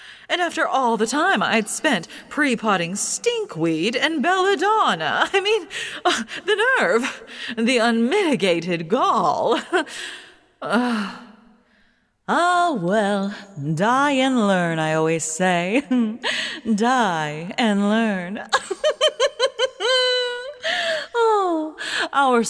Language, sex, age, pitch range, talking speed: English, female, 30-49, 195-280 Hz, 85 wpm